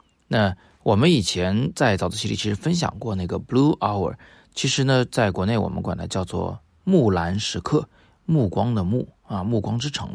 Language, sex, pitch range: Chinese, male, 95-125 Hz